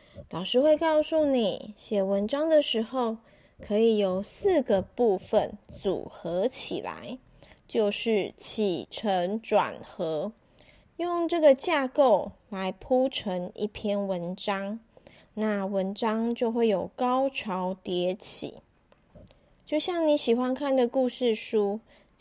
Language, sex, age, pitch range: Chinese, female, 30-49, 200-265 Hz